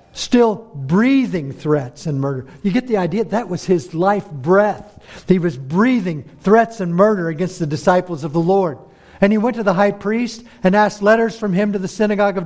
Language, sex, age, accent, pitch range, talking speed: English, male, 50-69, American, 170-210 Hz, 200 wpm